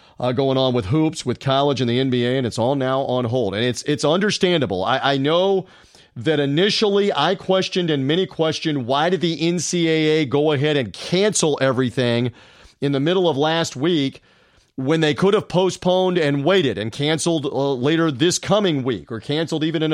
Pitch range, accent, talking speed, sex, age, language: 130-165 Hz, American, 190 wpm, male, 40-59, English